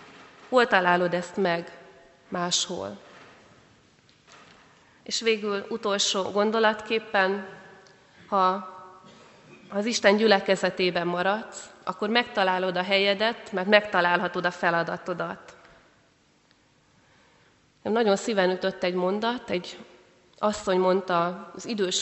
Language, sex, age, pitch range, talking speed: Hungarian, female, 30-49, 175-210 Hz, 85 wpm